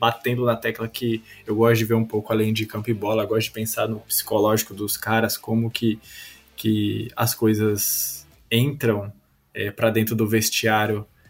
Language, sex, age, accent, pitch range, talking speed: Portuguese, male, 20-39, Brazilian, 110-130 Hz, 170 wpm